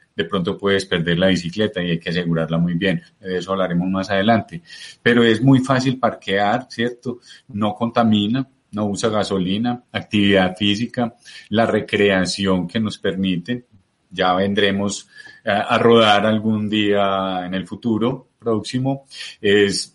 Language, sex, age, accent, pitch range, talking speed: Spanish, male, 30-49, Colombian, 95-115 Hz, 140 wpm